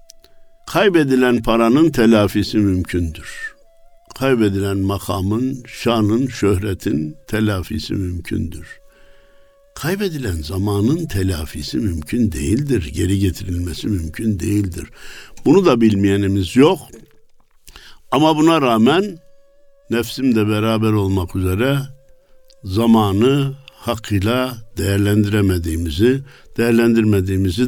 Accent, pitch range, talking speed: native, 105-165 Hz, 75 wpm